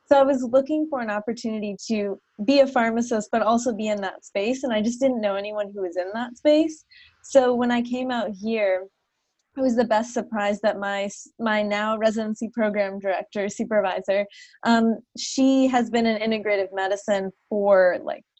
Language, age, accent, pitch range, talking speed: English, 20-39, American, 200-235 Hz, 185 wpm